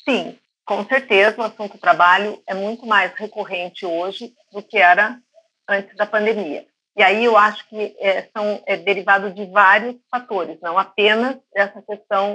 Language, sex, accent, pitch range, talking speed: Portuguese, female, Brazilian, 185-215 Hz, 160 wpm